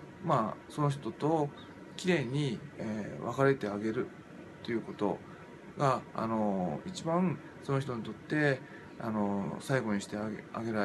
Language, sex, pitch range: Japanese, male, 110-160 Hz